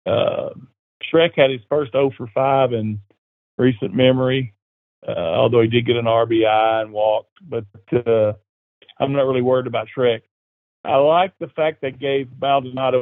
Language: English